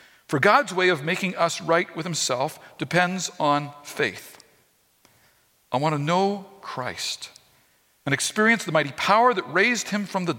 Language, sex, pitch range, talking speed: English, male, 145-215 Hz, 155 wpm